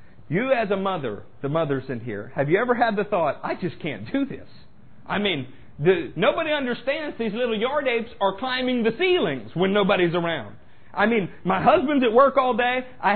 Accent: American